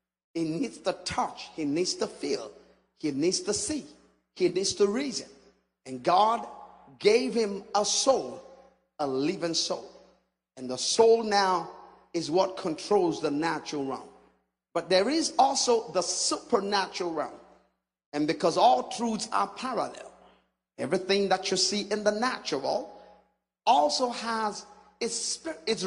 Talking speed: 140 wpm